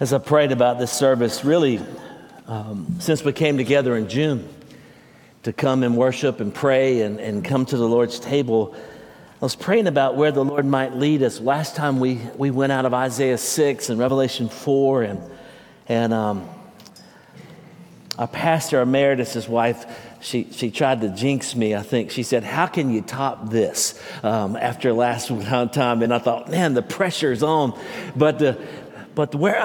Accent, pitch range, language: American, 120-155 Hz, English